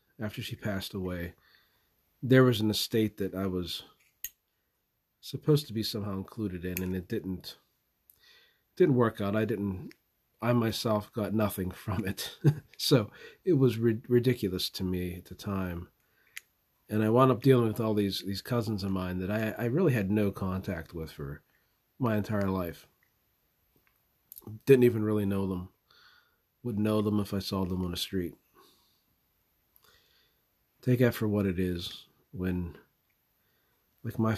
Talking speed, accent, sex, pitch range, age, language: 155 wpm, American, male, 95-115 Hz, 40-59, English